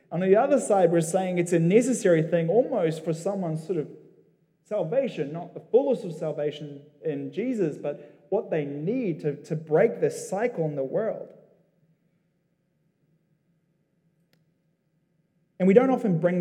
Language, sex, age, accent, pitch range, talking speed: English, male, 20-39, Australian, 140-175 Hz, 145 wpm